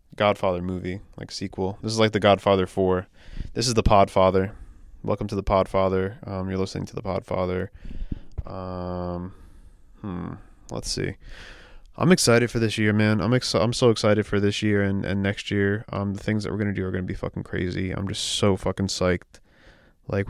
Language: English